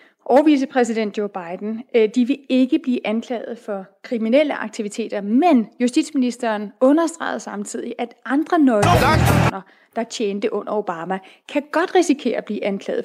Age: 30-49